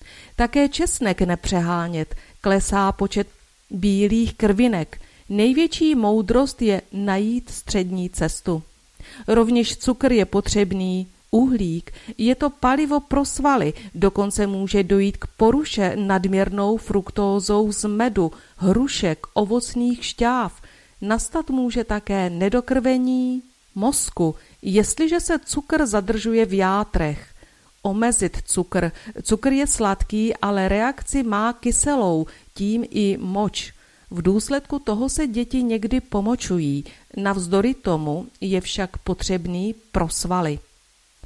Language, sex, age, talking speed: Czech, female, 40-59, 105 wpm